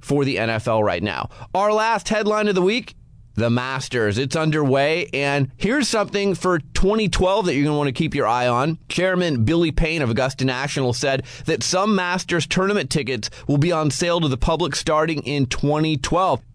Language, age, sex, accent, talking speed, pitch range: English, 30-49, male, American, 180 wpm, 135-185 Hz